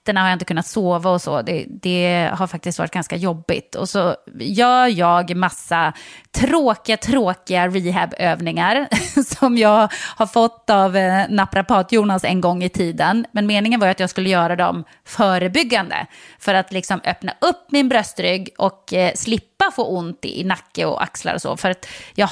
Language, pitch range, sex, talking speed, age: English, 180-225 Hz, female, 175 wpm, 30-49